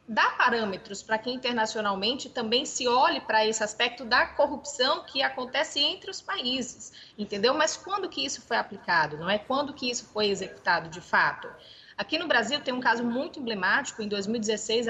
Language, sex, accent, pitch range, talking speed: Portuguese, female, Brazilian, 215-275 Hz, 175 wpm